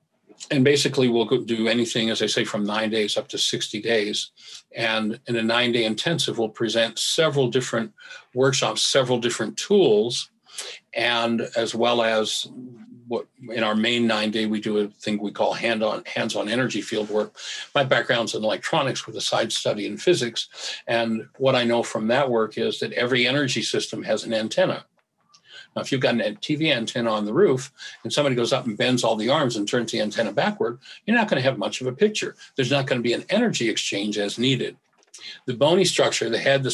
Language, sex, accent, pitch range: English, male, American, 110-135 Hz